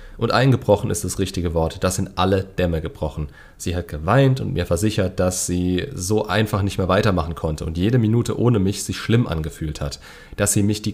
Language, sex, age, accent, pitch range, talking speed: German, male, 30-49, German, 90-115 Hz, 210 wpm